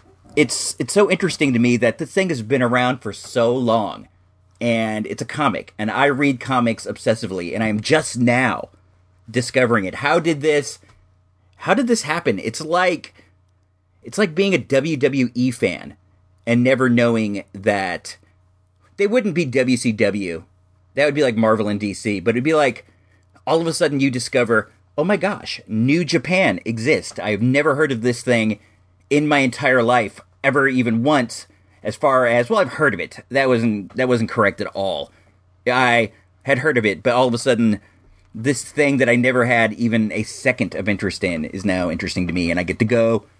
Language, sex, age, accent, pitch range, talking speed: English, male, 40-59, American, 95-135 Hz, 190 wpm